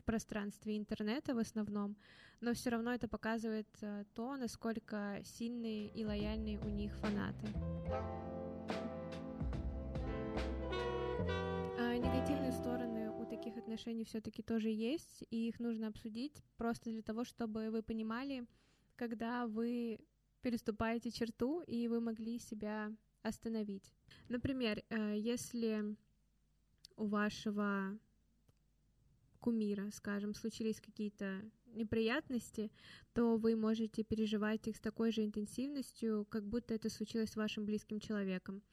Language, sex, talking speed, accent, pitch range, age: Russian, female, 110 wpm, native, 210-230 Hz, 20-39